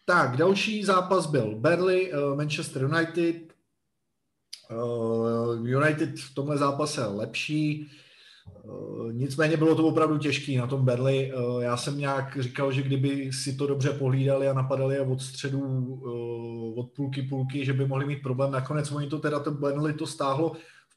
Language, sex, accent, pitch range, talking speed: Czech, male, native, 130-150 Hz, 155 wpm